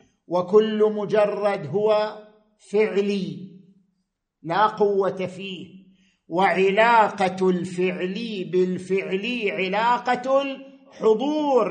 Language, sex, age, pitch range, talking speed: Arabic, male, 50-69, 190-255 Hz, 60 wpm